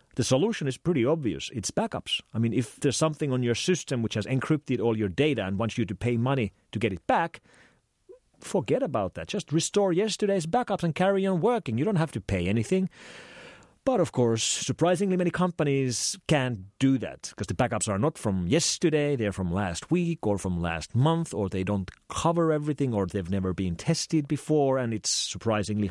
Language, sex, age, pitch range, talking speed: English, male, 40-59, 105-165 Hz, 200 wpm